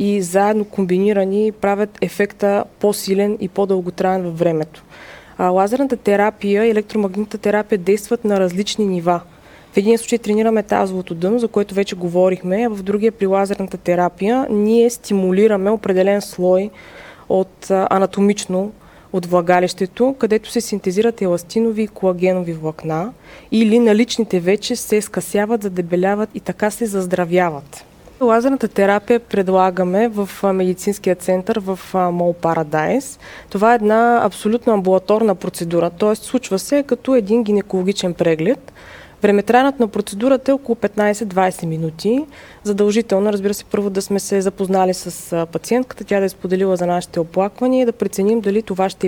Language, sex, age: Bulgarian, female, 20-39